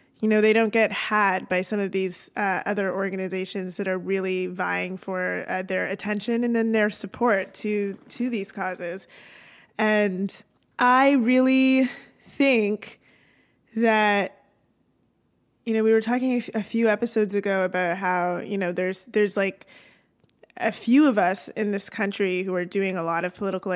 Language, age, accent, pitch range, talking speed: English, 20-39, American, 185-225 Hz, 165 wpm